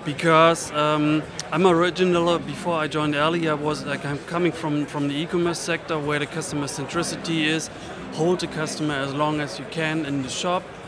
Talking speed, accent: 180 wpm, German